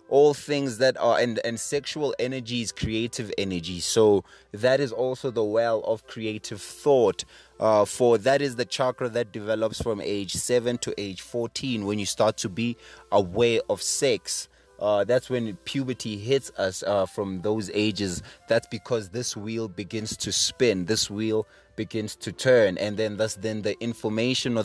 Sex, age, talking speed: male, 20-39, 175 wpm